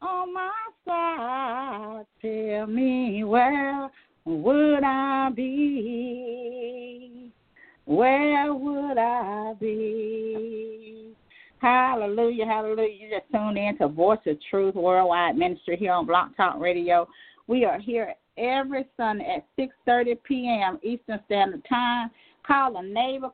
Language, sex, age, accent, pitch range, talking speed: English, female, 40-59, American, 205-260 Hz, 115 wpm